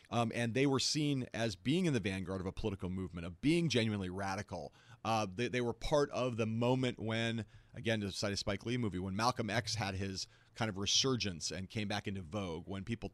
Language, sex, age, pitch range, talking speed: English, male, 40-59, 105-125 Hz, 225 wpm